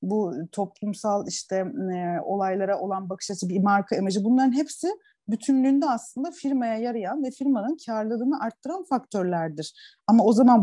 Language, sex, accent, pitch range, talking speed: Turkish, female, native, 200-290 Hz, 140 wpm